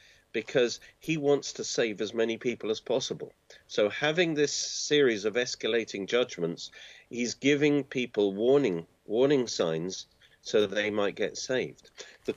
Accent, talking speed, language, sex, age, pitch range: British, 150 wpm, English, male, 40-59, 105-145 Hz